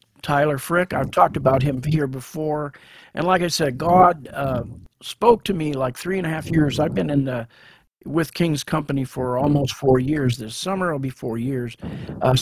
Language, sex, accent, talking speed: English, male, American, 200 wpm